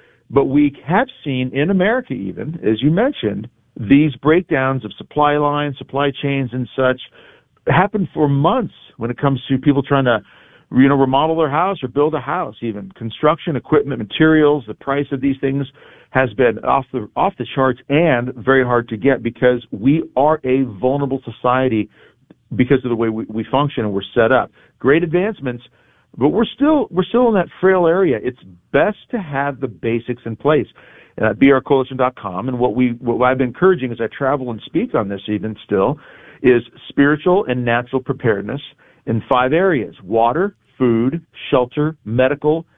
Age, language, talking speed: 50-69, English, 175 wpm